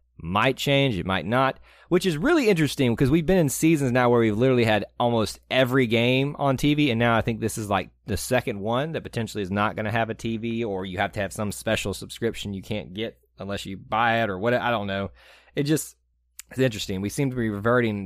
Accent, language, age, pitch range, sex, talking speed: American, English, 30-49, 95-130 Hz, male, 240 wpm